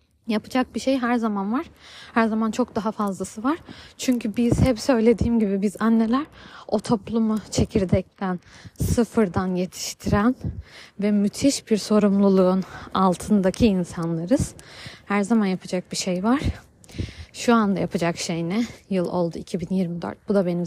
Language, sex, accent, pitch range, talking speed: Turkish, female, native, 190-230 Hz, 135 wpm